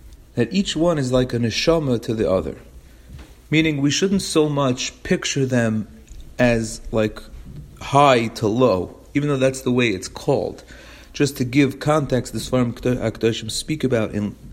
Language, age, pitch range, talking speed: English, 40-59, 105-140 Hz, 160 wpm